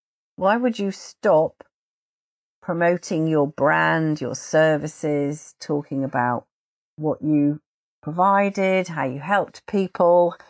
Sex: female